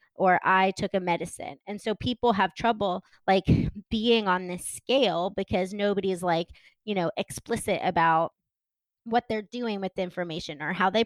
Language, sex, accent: English, female, American